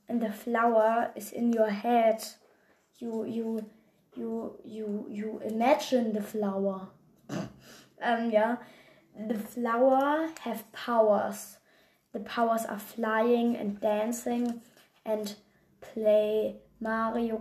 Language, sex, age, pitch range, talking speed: German, female, 20-39, 215-240 Hz, 105 wpm